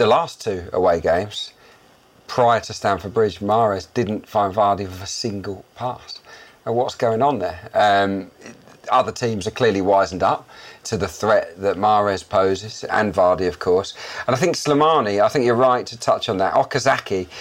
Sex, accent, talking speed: male, British, 185 wpm